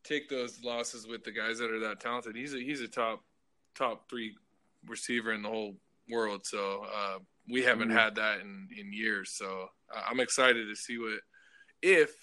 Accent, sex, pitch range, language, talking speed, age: American, male, 110-135 Hz, English, 190 wpm, 20-39